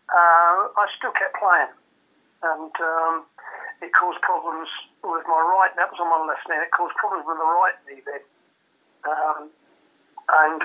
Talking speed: 165 wpm